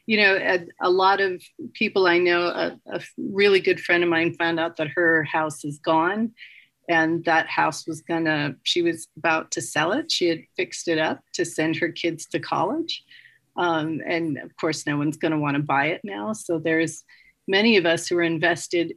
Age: 40-59